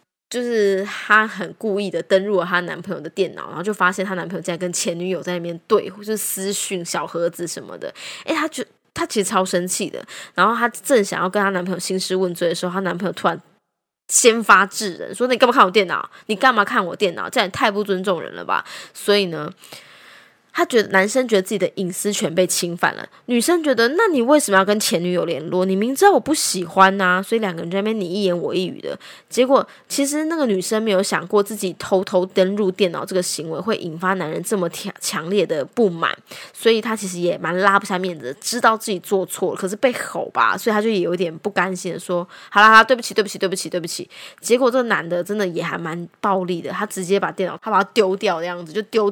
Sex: female